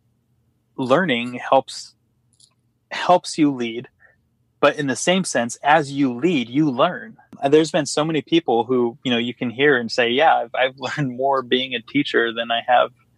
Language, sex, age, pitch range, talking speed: English, male, 30-49, 120-145 Hz, 180 wpm